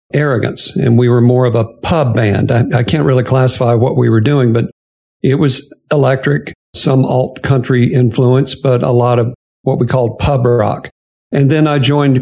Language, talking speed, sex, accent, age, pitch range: English, 190 wpm, male, American, 50-69, 120-135 Hz